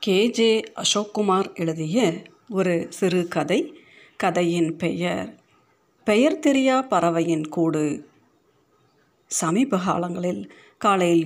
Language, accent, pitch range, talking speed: Tamil, native, 170-220 Hz, 90 wpm